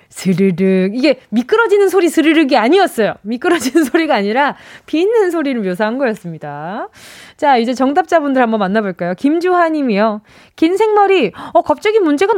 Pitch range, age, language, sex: 210-335 Hz, 20-39, Korean, female